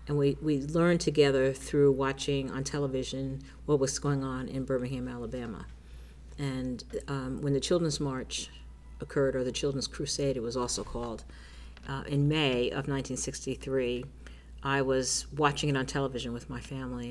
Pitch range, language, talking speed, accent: 125-145 Hz, English, 160 wpm, American